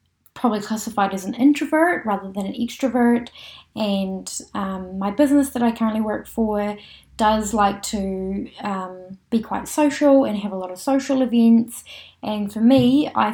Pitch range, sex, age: 200-250 Hz, female, 10-29